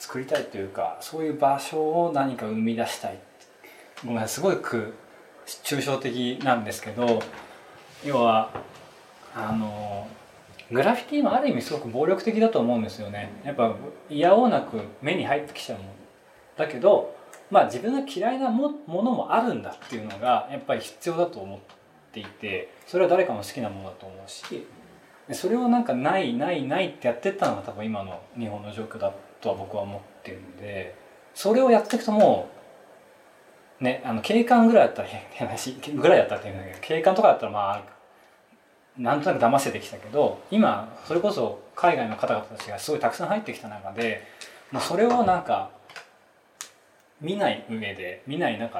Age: 20-39